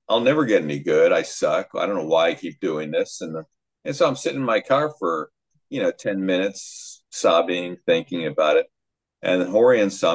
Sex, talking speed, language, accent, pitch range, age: male, 205 wpm, English, American, 110-165 Hz, 50-69